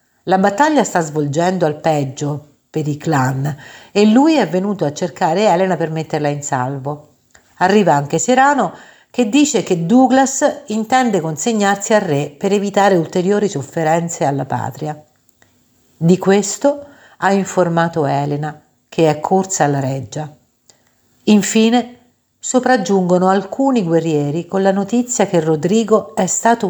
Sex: female